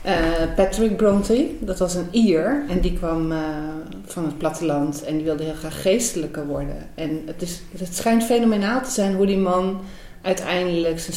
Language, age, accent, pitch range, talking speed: Dutch, 40-59, Dutch, 155-185 Hz, 175 wpm